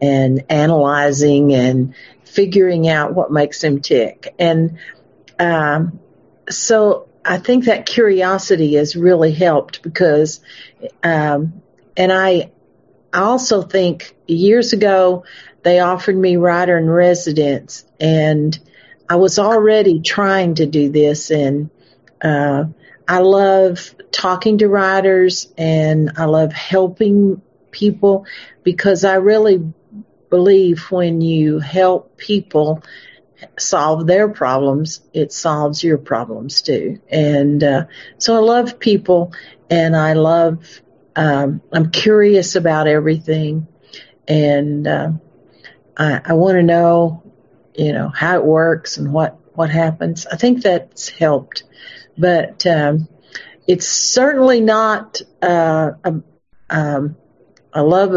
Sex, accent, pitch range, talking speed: female, American, 155-190 Hz, 120 wpm